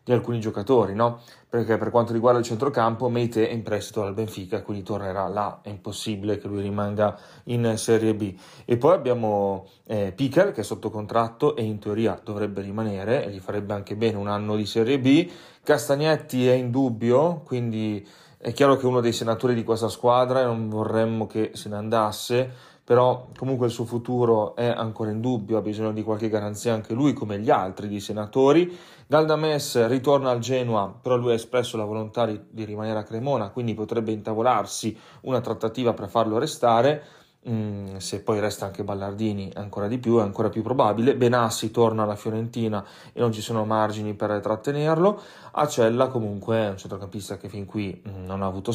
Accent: native